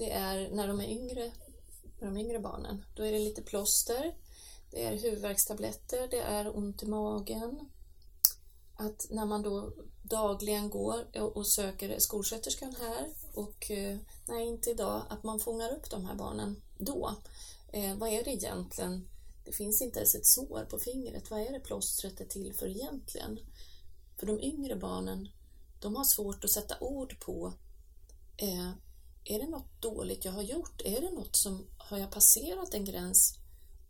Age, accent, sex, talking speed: 30-49, native, female, 165 wpm